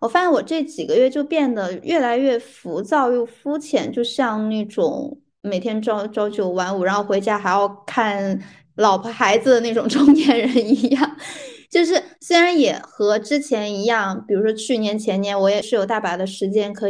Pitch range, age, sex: 205-280 Hz, 20-39, female